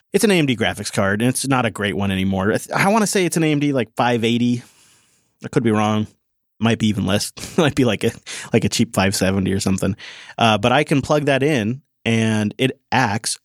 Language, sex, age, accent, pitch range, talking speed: English, male, 30-49, American, 105-125 Hz, 230 wpm